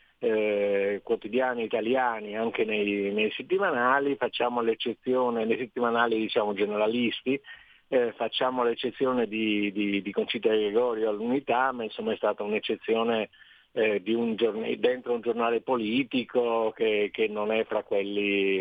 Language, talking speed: Italian, 130 wpm